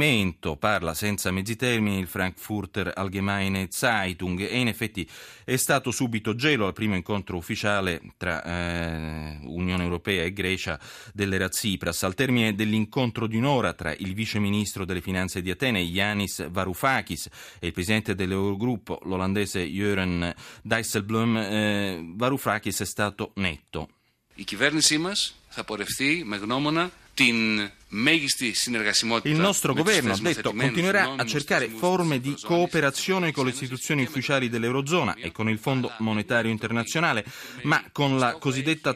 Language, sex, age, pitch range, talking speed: Italian, male, 30-49, 95-130 Hz, 125 wpm